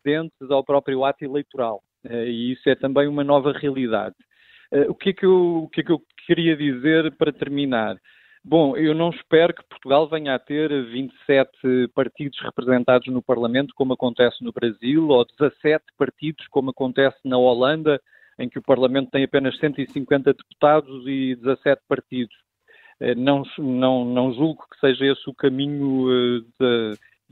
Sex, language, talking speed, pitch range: male, Portuguese, 145 wpm, 130-150 Hz